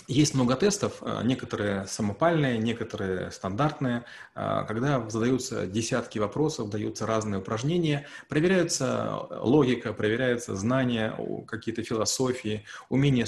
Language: Russian